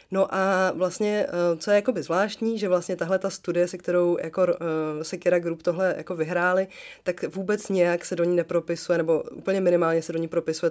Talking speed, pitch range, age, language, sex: 195 wpm, 160-180 Hz, 20-39, English, female